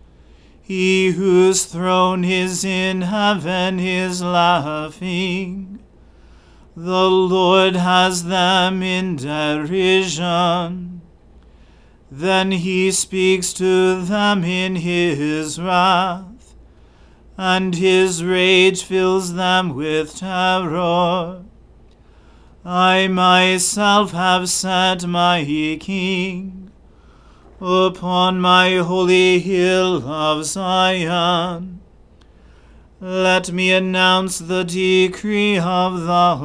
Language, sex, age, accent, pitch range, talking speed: English, male, 40-59, American, 175-185 Hz, 80 wpm